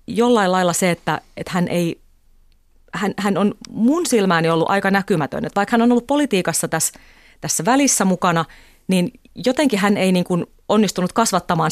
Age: 30-49